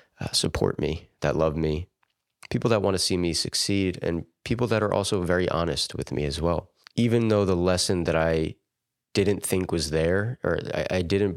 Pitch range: 80-105 Hz